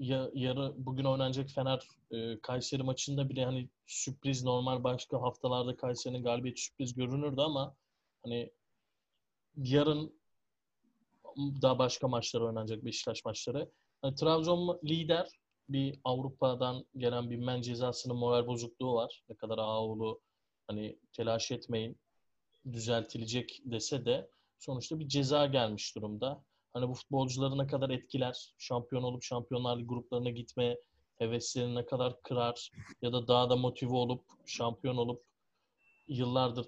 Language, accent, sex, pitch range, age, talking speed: Turkish, native, male, 115-135 Hz, 30-49, 125 wpm